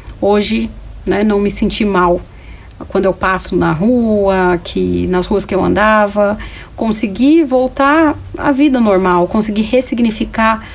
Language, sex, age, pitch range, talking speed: Portuguese, female, 40-59, 190-225 Hz, 130 wpm